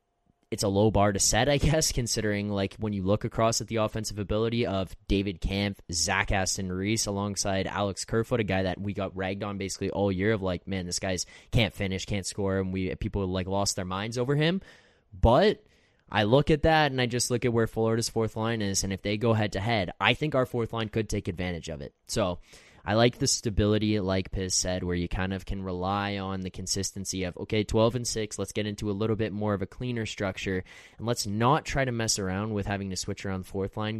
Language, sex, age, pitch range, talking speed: English, male, 20-39, 95-115 Hz, 235 wpm